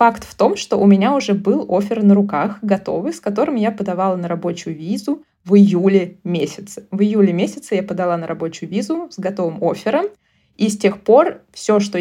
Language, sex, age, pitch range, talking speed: Russian, female, 20-39, 190-235 Hz, 195 wpm